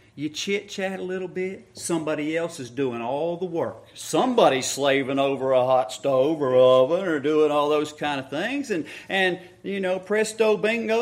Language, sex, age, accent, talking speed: English, male, 40-59, American, 180 wpm